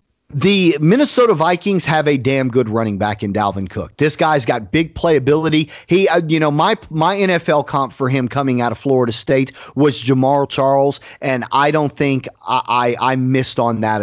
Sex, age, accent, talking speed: male, 40-59, American, 190 wpm